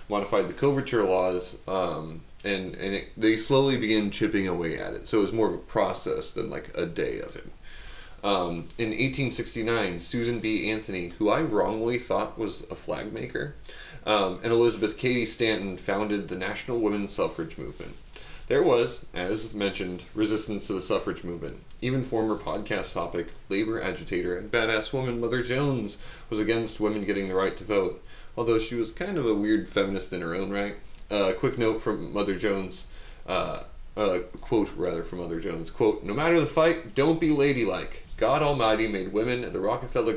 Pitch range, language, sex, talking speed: 95-120 Hz, English, male, 180 wpm